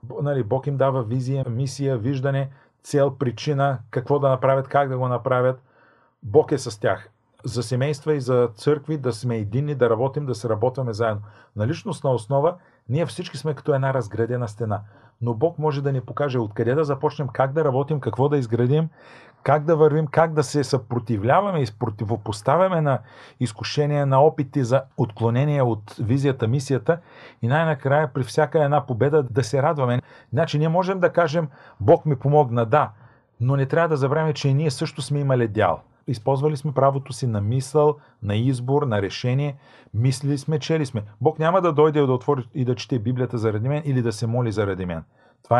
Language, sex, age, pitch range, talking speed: Bulgarian, male, 40-59, 120-150 Hz, 180 wpm